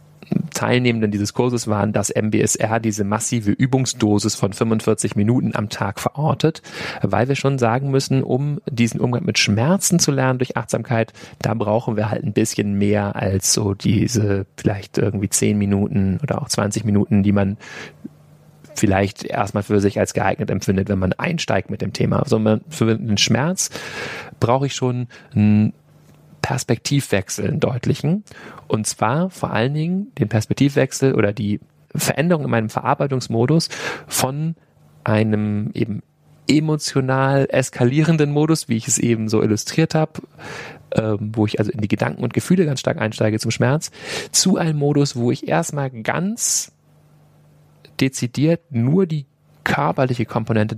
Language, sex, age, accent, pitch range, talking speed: German, male, 30-49, German, 105-145 Hz, 150 wpm